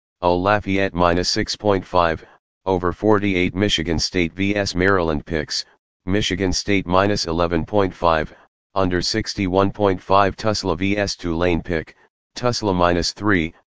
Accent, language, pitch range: American, English, 85-100 Hz